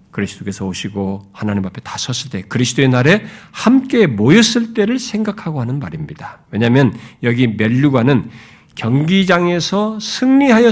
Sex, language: male, Korean